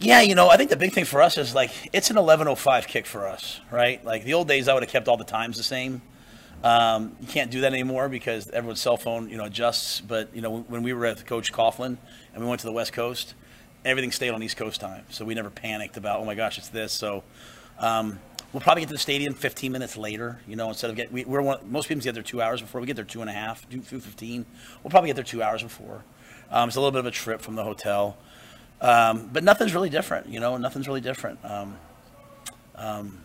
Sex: male